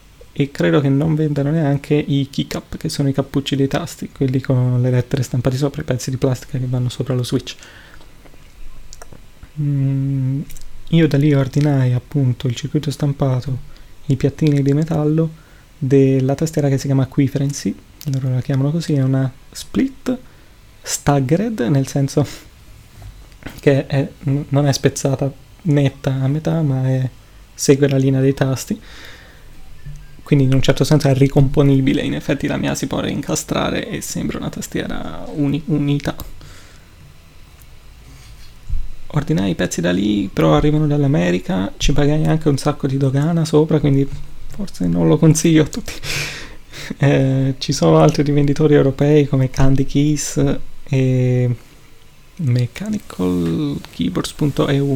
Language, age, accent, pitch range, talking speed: Italian, 20-39, native, 130-145 Hz, 140 wpm